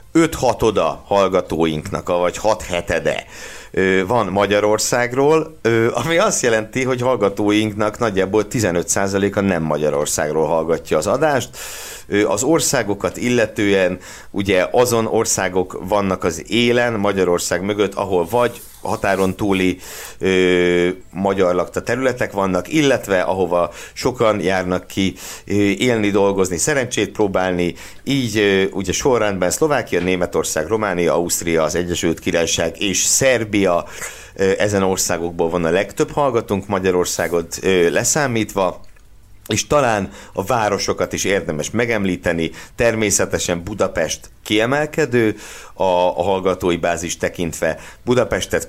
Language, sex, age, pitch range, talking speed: Hungarian, male, 60-79, 90-115 Hz, 110 wpm